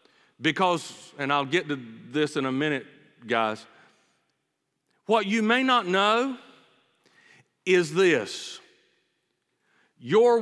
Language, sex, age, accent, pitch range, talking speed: English, male, 50-69, American, 135-175 Hz, 105 wpm